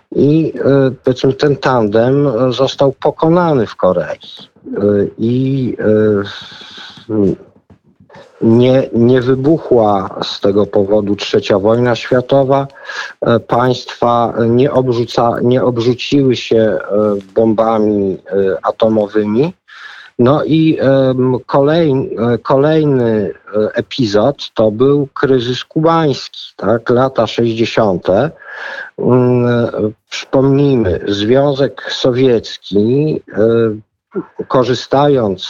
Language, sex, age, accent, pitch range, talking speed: Polish, male, 50-69, native, 115-135 Hz, 75 wpm